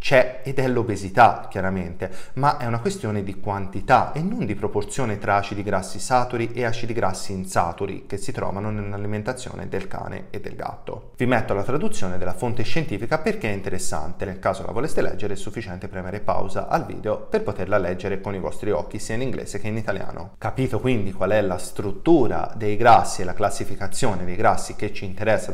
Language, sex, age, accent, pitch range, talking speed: Italian, male, 30-49, native, 95-125 Hz, 195 wpm